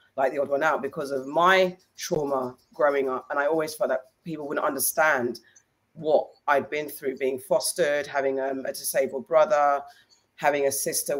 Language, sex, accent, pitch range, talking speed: English, female, British, 135-155 Hz, 175 wpm